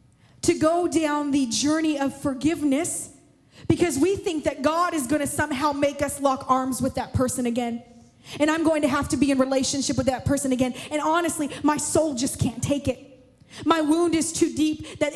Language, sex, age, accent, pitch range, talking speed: English, female, 20-39, American, 255-310 Hz, 200 wpm